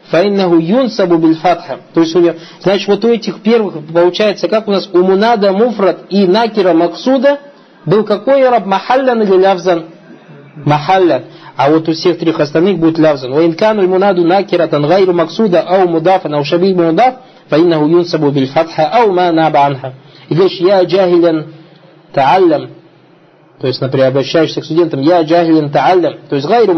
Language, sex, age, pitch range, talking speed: Russian, male, 40-59, 155-195 Hz, 100 wpm